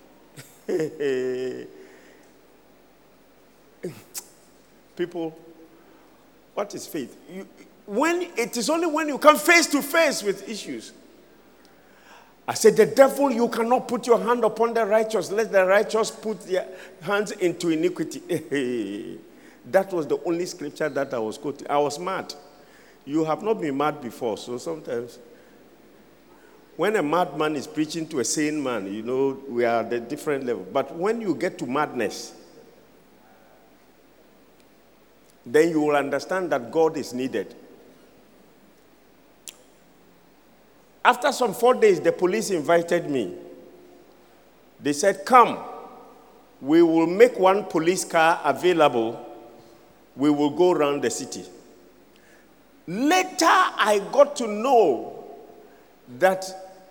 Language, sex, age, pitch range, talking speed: English, male, 50-69, 150-245 Hz, 125 wpm